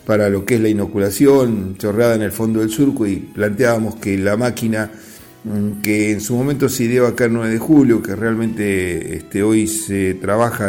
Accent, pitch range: Argentinian, 105-125 Hz